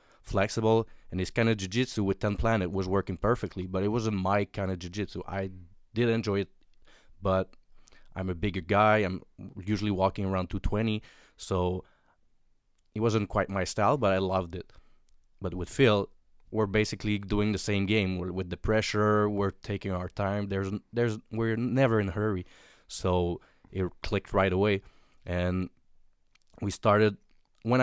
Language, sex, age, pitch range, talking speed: English, male, 20-39, 90-105 Hz, 160 wpm